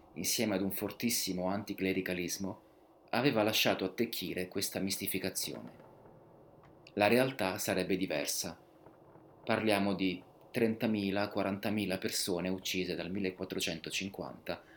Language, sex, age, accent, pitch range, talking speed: Italian, male, 30-49, native, 90-110 Hz, 85 wpm